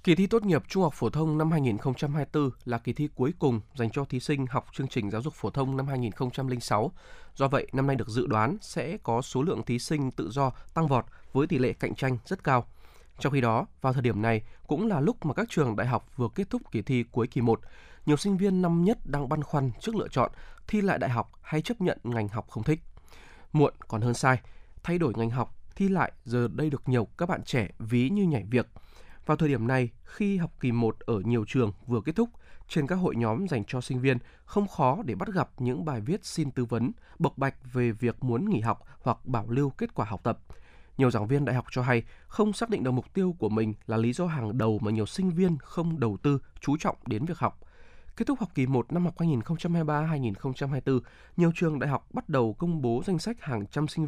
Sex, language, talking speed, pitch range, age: male, Vietnamese, 240 wpm, 120-155 Hz, 20-39